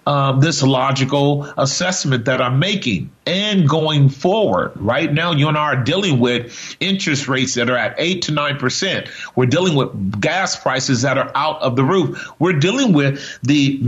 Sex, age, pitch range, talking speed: male, 40-59, 135-170 Hz, 180 wpm